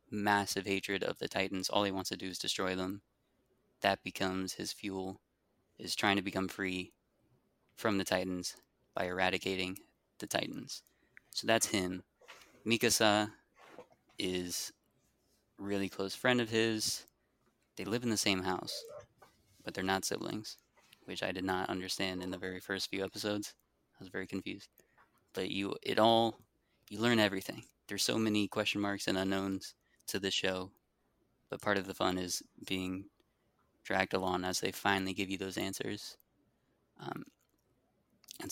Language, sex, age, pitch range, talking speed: English, male, 20-39, 95-105 Hz, 155 wpm